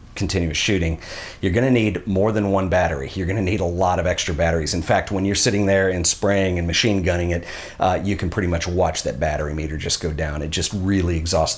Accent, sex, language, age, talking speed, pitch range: American, male, English, 40-59, 235 wpm, 85-105 Hz